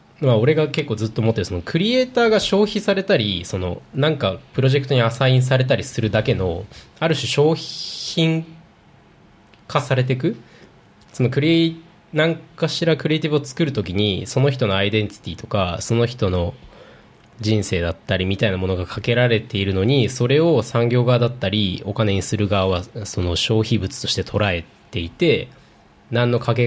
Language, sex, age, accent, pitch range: Japanese, male, 20-39, native, 100-145 Hz